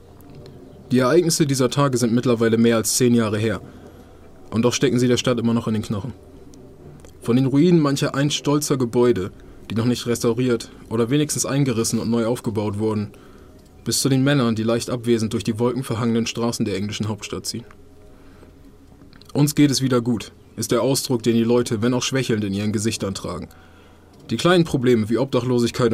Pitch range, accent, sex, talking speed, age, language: 100-125 Hz, German, male, 180 wpm, 20-39, German